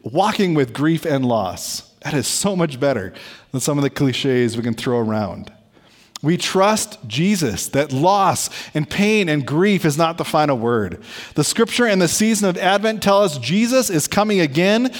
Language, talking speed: English, 185 wpm